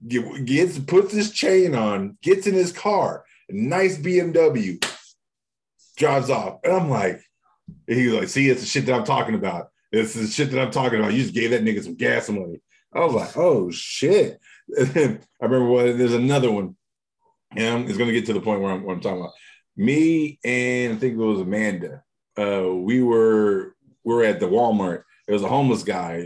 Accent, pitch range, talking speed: American, 110-150 Hz, 195 wpm